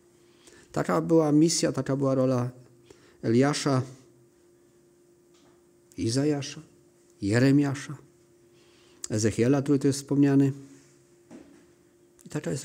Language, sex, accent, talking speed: Polish, male, native, 80 wpm